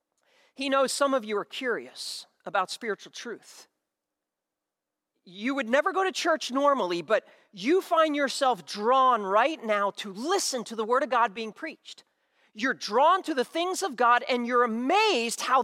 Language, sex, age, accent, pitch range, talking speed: English, male, 40-59, American, 250-345 Hz, 170 wpm